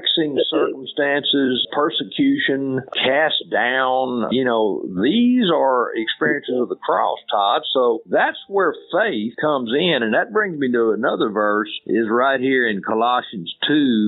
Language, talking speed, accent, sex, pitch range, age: English, 135 wpm, American, male, 125-205 Hz, 50-69